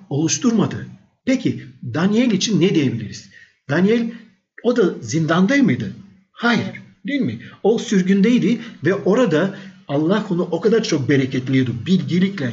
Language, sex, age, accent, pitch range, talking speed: Turkish, male, 60-79, native, 145-210 Hz, 120 wpm